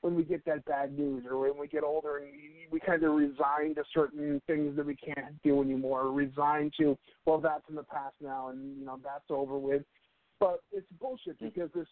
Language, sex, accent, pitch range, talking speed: English, male, American, 140-165 Hz, 220 wpm